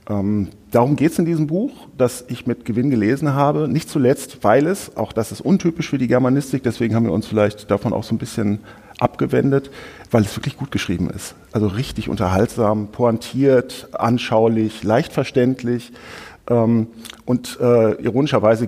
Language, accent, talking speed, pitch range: German, German, 155 wpm, 105-130 Hz